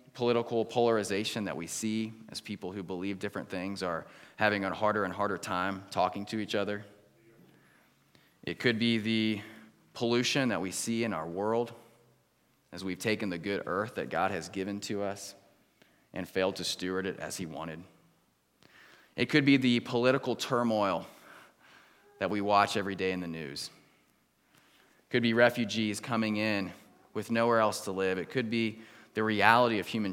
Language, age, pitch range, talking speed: English, 20-39, 95-120 Hz, 170 wpm